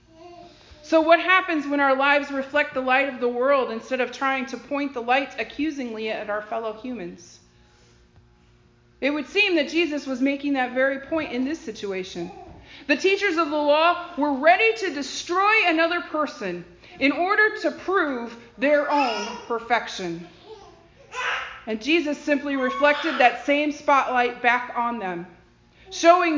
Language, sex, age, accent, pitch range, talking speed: English, female, 40-59, American, 240-310 Hz, 150 wpm